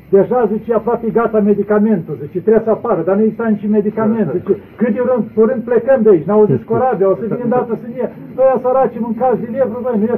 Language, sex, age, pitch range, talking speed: Romanian, male, 50-69, 185-220 Hz, 240 wpm